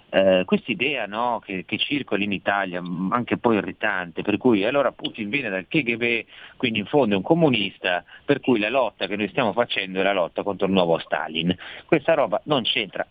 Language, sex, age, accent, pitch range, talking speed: Italian, male, 40-59, native, 90-120 Hz, 195 wpm